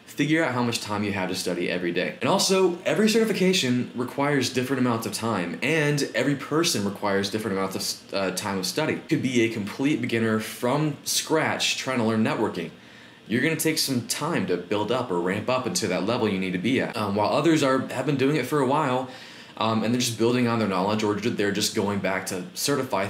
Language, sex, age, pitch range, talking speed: English, male, 20-39, 105-140 Hz, 230 wpm